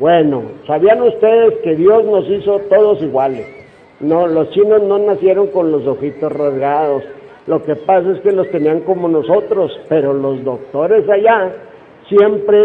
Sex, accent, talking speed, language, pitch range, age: male, Mexican, 150 wpm, Spanish, 150-215 Hz, 50-69